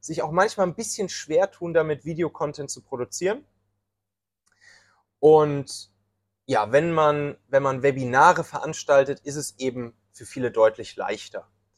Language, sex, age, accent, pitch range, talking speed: German, male, 20-39, German, 125-165 Hz, 125 wpm